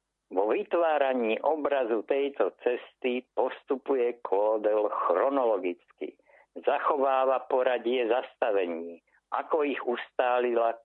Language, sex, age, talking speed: Slovak, male, 50-69, 75 wpm